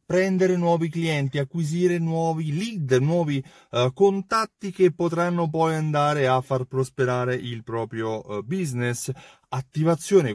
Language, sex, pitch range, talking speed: Italian, male, 115-165 Hz, 110 wpm